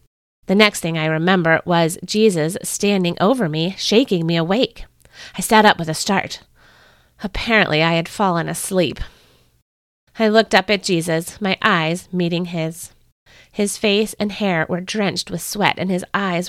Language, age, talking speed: English, 30-49, 160 wpm